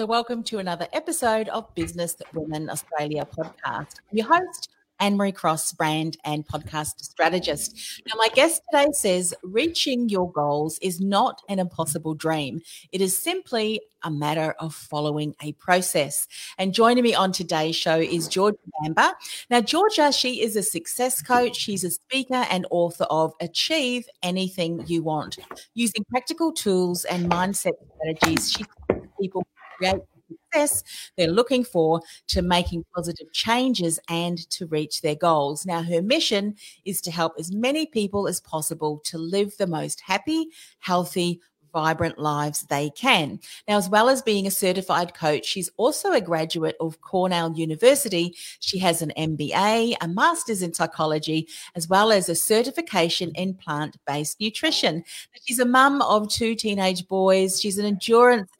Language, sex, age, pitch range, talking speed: English, female, 40-59, 165-225 Hz, 155 wpm